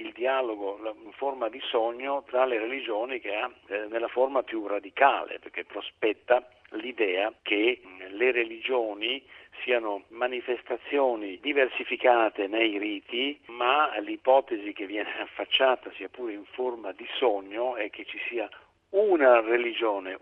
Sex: male